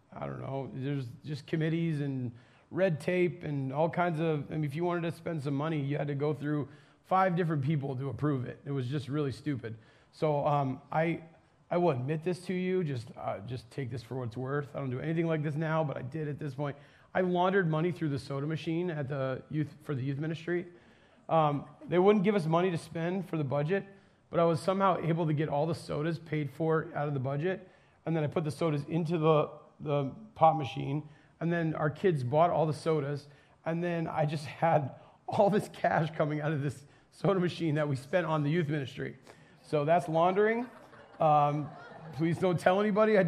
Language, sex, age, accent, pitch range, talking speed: English, male, 30-49, American, 145-170 Hz, 220 wpm